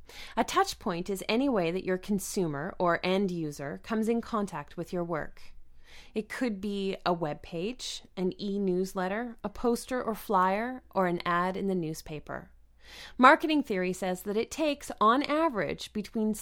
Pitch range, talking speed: 170-235 Hz, 170 wpm